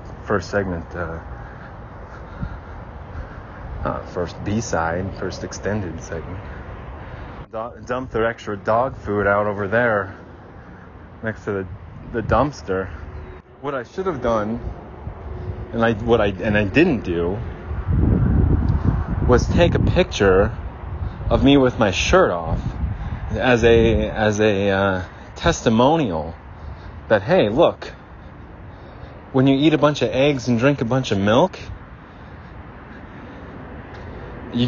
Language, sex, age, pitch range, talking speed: English, male, 30-49, 90-125 Hz, 120 wpm